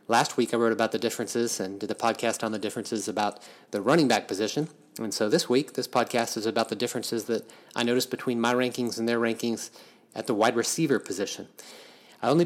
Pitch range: 110-135 Hz